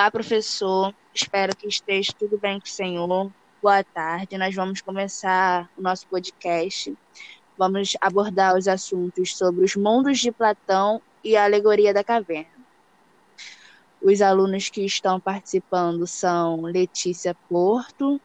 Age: 10-29